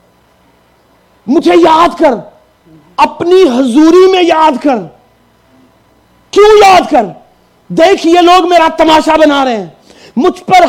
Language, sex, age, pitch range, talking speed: Urdu, male, 40-59, 220-335 Hz, 120 wpm